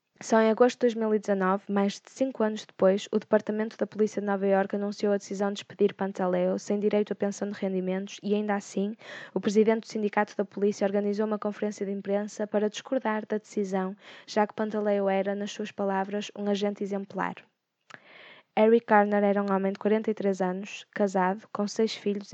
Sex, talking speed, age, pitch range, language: female, 185 wpm, 10-29, 195-215 Hz, Portuguese